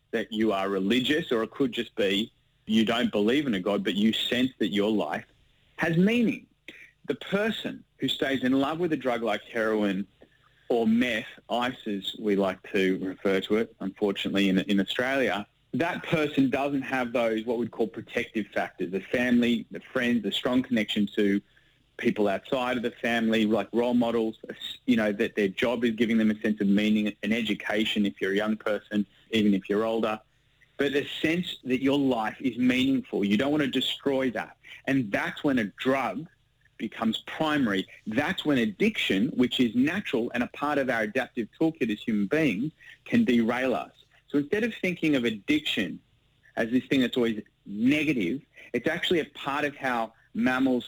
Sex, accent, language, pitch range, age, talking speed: male, Australian, English, 110-140 Hz, 30-49, 185 wpm